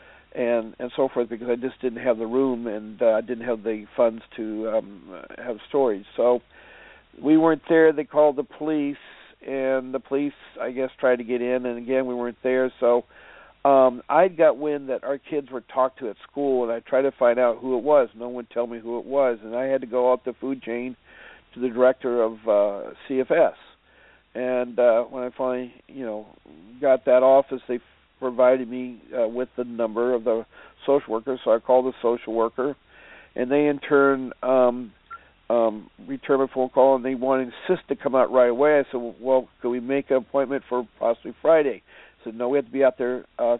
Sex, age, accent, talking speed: male, 50-69, American, 215 wpm